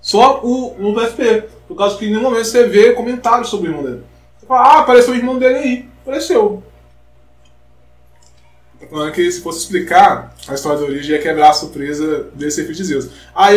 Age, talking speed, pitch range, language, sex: 20-39, 200 wpm, 160-225 Hz, Portuguese, male